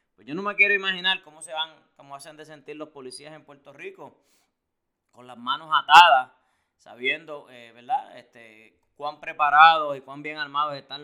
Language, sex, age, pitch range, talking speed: Spanish, male, 20-39, 125-155 Hz, 175 wpm